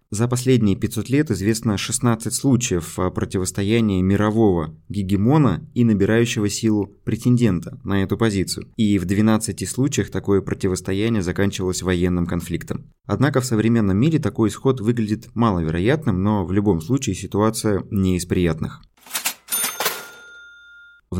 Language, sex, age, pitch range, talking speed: Russian, male, 20-39, 95-125 Hz, 120 wpm